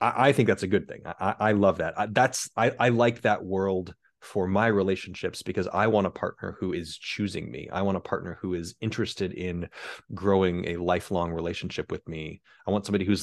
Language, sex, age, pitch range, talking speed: English, male, 30-49, 95-110 Hz, 215 wpm